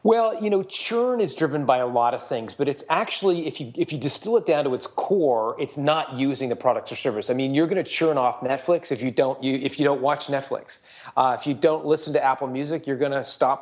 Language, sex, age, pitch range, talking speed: English, male, 30-49, 130-155 Hz, 265 wpm